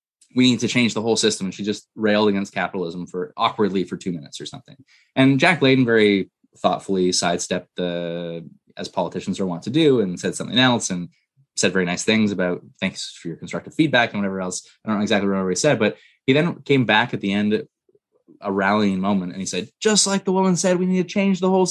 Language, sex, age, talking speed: English, male, 20-39, 230 wpm